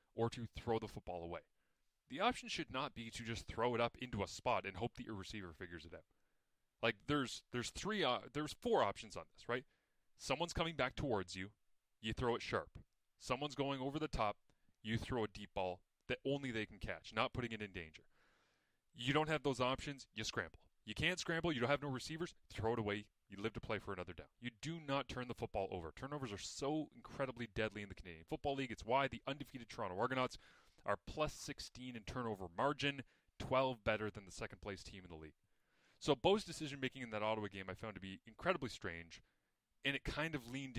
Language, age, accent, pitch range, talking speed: English, 30-49, American, 100-130 Hz, 220 wpm